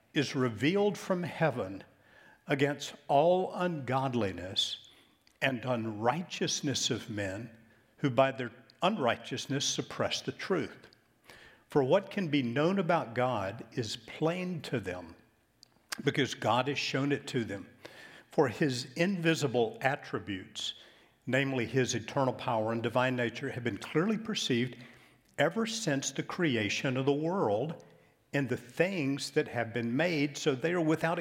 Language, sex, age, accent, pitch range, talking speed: English, male, 60-79, American, 120-165 Hz, 135 wpm